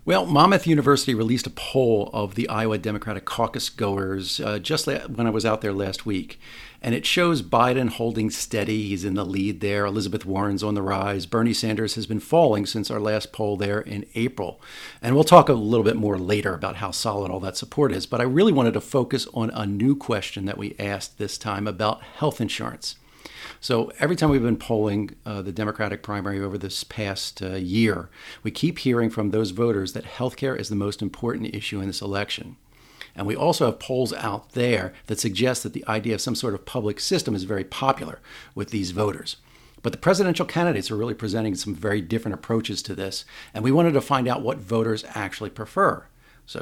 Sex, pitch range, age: male, 100-125 Hz, 40-59